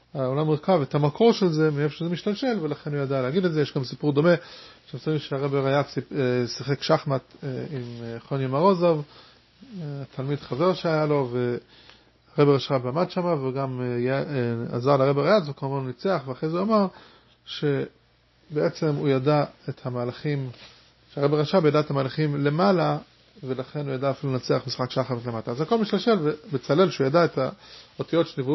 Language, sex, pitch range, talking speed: English, male, 135-175 Hz, 150 wpm